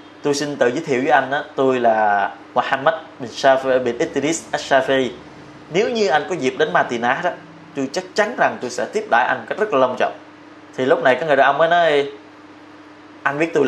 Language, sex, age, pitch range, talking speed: Vietnamese, male, 20-39, 130-160 Hz, 215 wpm